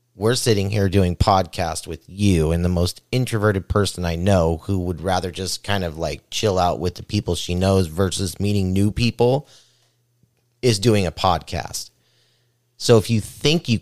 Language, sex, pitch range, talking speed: English, male, 95-120 Hz, 180 wpm